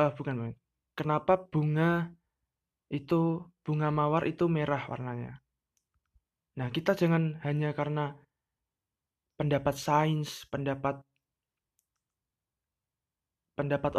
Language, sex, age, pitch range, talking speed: Indonesian, male, 20-39, 130-155 Hz, 75 wpm